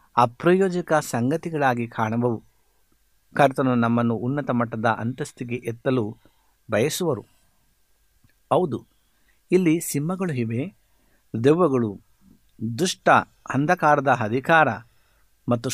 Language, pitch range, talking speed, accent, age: Kannada, 115-145 Hz, 70 wpm, native, 60-79